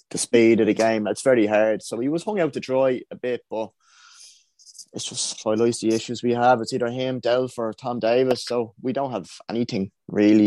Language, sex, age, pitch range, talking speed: English, male, 20-39, 115-130 Hz, 225 wpm